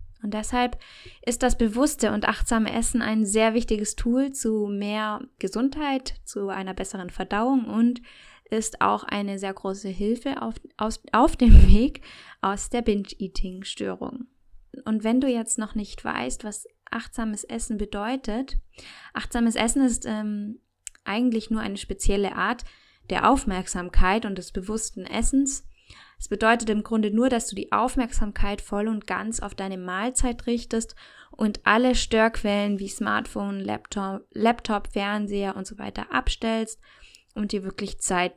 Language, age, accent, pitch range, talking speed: German, 20-39, German, 205-240 Hz, 140 wpm